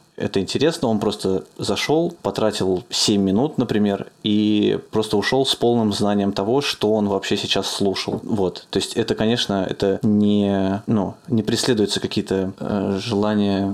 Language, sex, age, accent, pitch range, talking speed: Russian, male, 20-39, native, 100-115 Hz, 130 wpm